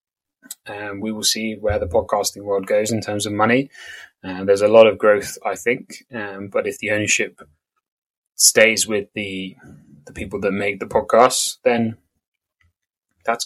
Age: 20-39